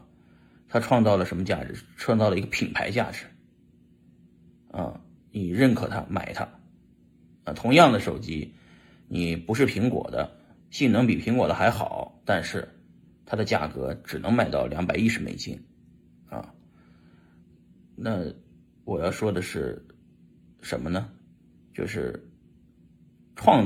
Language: Chinese